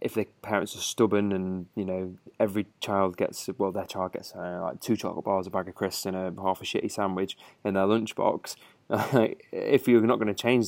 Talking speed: 220 wpm